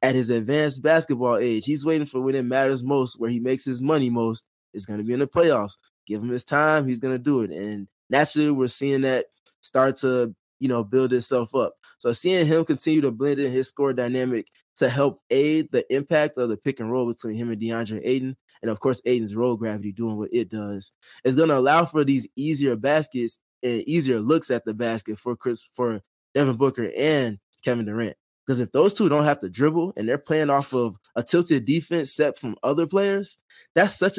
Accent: American